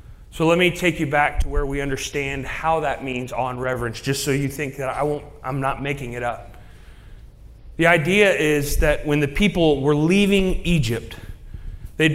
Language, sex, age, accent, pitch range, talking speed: English, male, 30-49, American, 140-185 Hz, 190 wpm